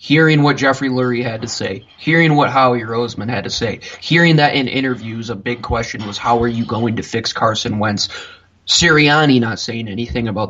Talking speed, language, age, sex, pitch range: 200 wpm, English, 20-39, male, 120-145 Hz